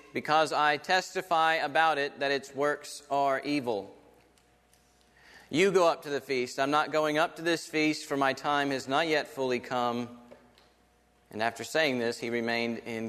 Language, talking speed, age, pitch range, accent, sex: English, 175 wpm, 40-59, 125-165 Hz, American, male